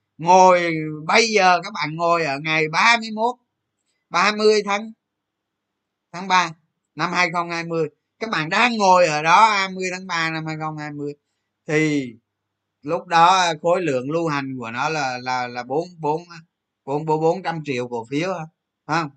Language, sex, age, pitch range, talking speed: Vietnamese, male, 20-39, 115-185 Hz, 140 wpm